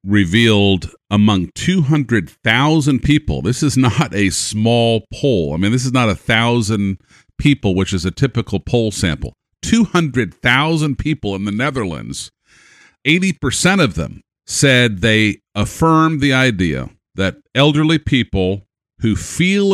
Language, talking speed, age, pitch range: English, 130 wpm, 50-69, 100-130 Hz